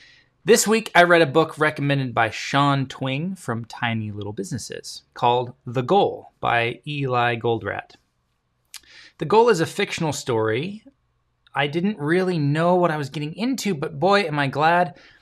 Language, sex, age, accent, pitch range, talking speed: English, male, 20-39, American, 120-170 Hz, 160 wpm